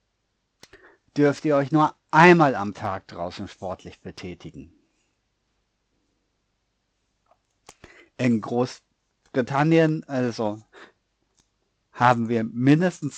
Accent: German